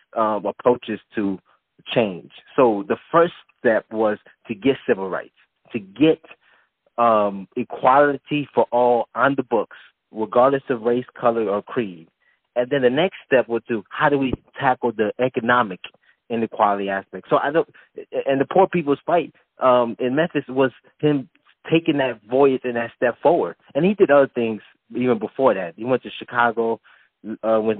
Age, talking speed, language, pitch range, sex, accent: 20-39, 165 wpm, English, 110-135 Hz, male, American